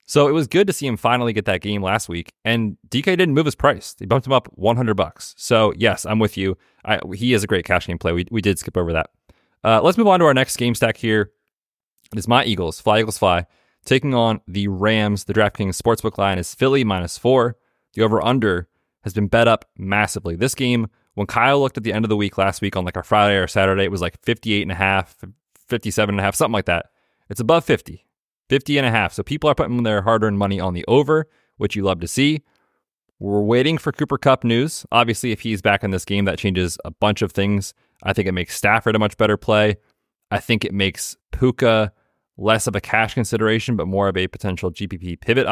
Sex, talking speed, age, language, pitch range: male, 230 wpm, 30-49, English, 100-120 Hz